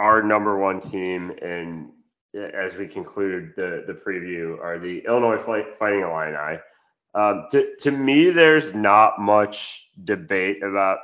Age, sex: 20-39, male